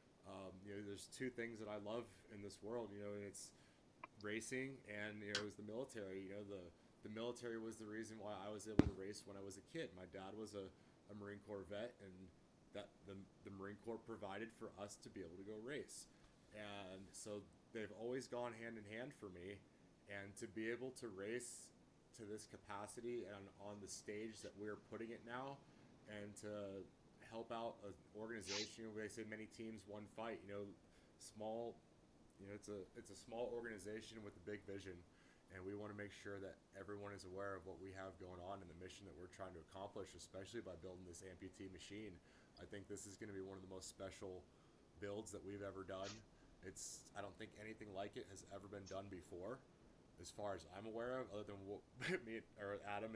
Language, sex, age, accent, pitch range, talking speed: English, male, 30-49, American, 95-110 Hz, 220 wpm